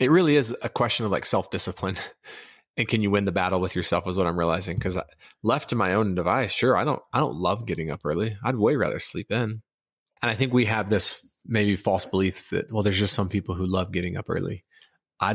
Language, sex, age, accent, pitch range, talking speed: English, male, 30-49, American, 95-110 Hz, 235 wpm